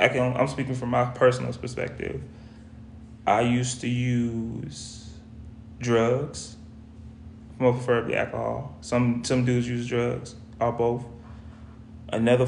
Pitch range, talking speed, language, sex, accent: 115-130 Hz, 115 wpm, English, male, American